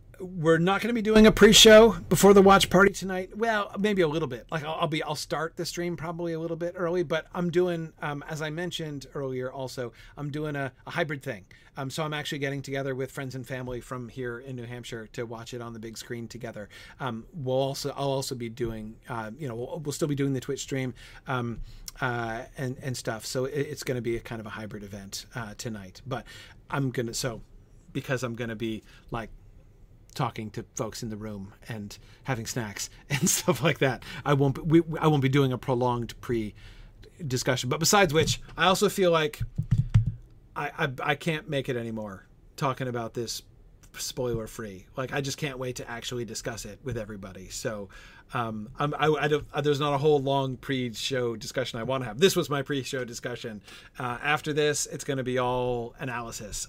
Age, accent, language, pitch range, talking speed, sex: 40-59, American, English, 115-150 Hz, 210 wpm, male